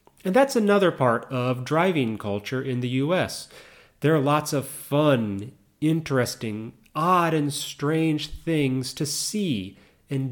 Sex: male